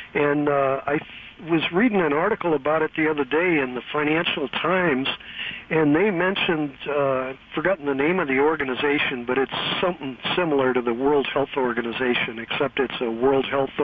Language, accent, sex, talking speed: English, American, male, 180 wpm